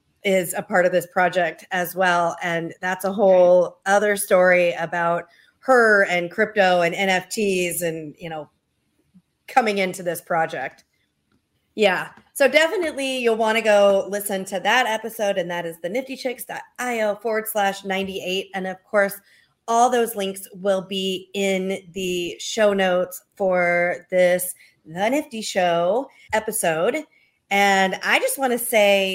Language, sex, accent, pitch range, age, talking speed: English, female, American, 180-210 Hz, 40-59, 140 wpm